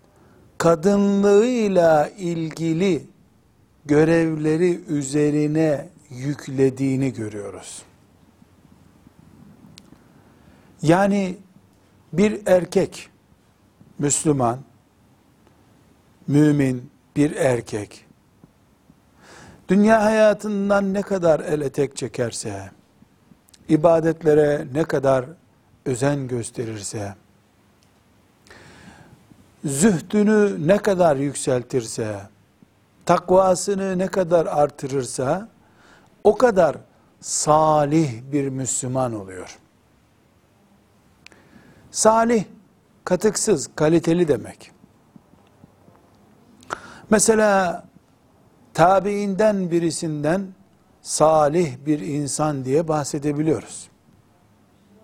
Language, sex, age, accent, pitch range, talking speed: Turkish, male, 60-79, native, 125-185 Hz, 55 wpm